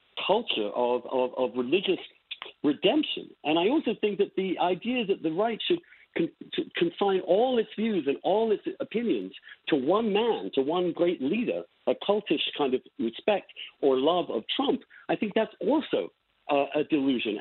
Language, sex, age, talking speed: English, male, 50-69, 170 wpm